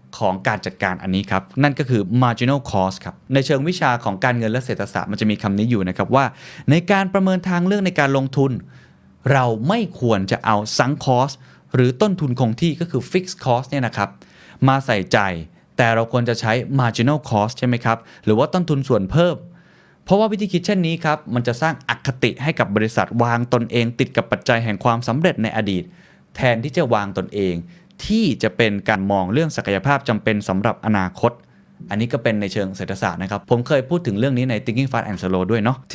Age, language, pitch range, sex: 20-39, Thai, 105-145 Hz, male